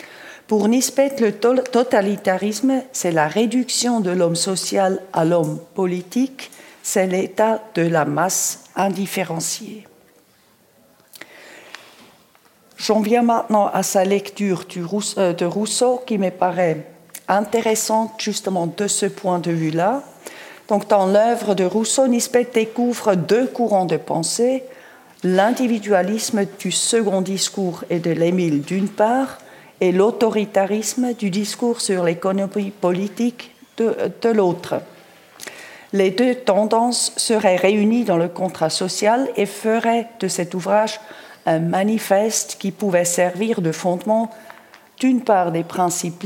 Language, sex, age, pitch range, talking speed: French, female, 50-69, 180-225 Hz, 120 wpm